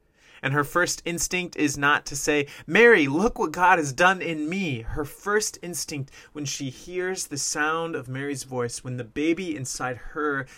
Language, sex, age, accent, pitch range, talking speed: English, male, 30-49, American, 120-155 Hz, 180 wpm